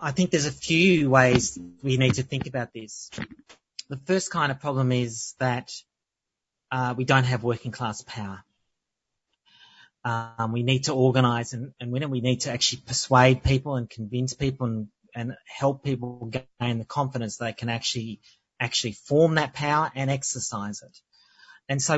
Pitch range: 125-155 Hz